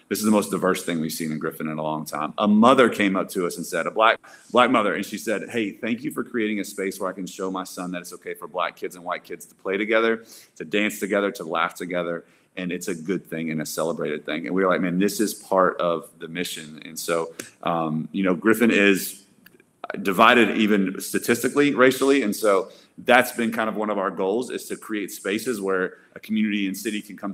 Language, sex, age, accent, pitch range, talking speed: English, male, 30-49, American, 90-110 Hz, 245 wpm